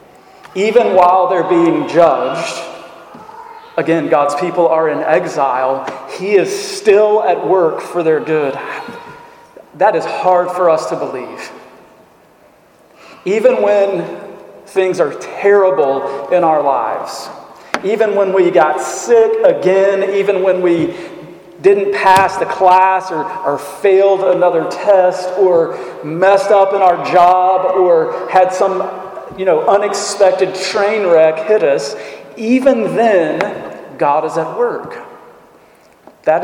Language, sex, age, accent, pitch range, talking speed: English, male, 40-59, American, 160-200 Hz, 125 wpm